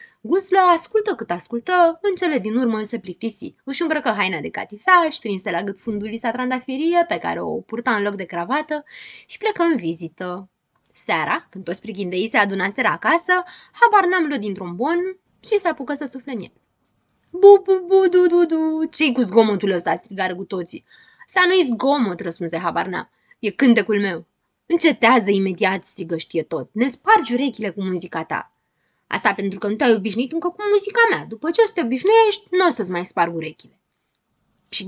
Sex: female